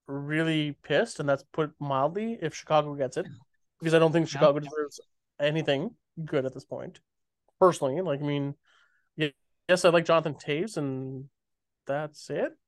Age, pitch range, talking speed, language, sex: 20-39, 145-180 Hz, 155 wpm, English, male